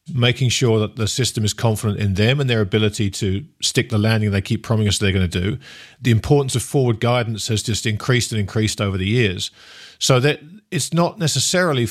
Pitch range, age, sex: 110-135 Hz, 40-59, male